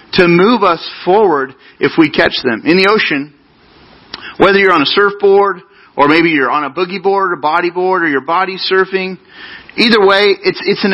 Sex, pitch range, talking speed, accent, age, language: male, 175-220 Hz, 190 wpm, American, 40-59, English